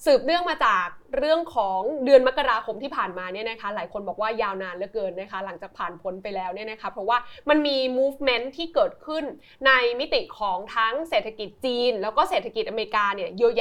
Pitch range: 215-290 Hz